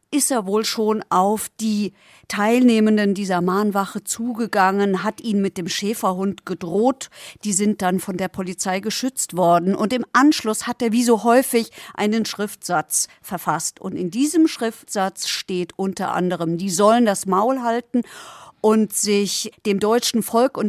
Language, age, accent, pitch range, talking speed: German, 50-69, German, 195-230 Hz, 155 wpm